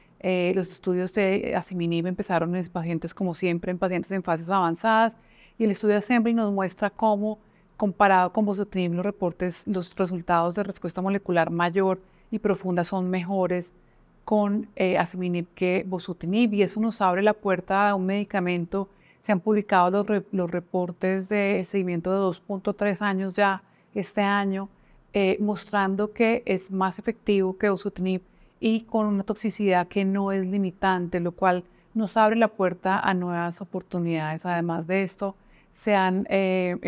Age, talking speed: 30-49, 160 wpm